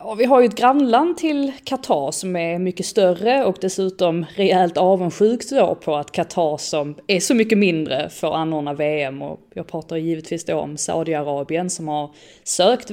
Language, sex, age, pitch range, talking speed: English, female, 30-49, 150-190 Hz, 160 wpm